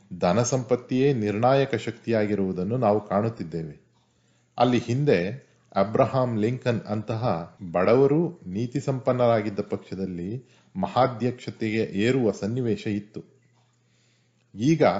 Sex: male